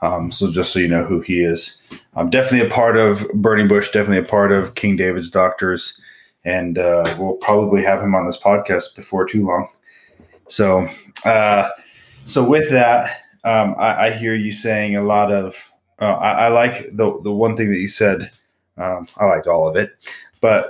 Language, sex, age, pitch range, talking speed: English, male, 20-39, 90-105 Hz, 195 wpm